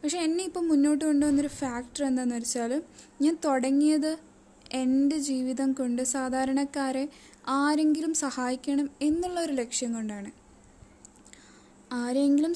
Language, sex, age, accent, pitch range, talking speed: Malayalam, female, 10-29, native, 245-280 Hz, 105 wpm